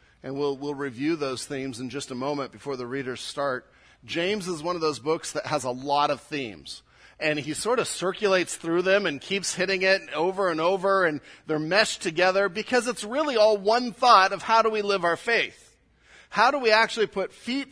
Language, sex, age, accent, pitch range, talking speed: English, male, 40-59, American, 140-195 Hz, 215 wpm